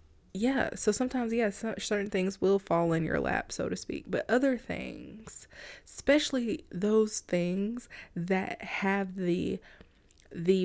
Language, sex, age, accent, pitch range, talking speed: English, female, 20-39, American, 160-205 Hz, 135 wpm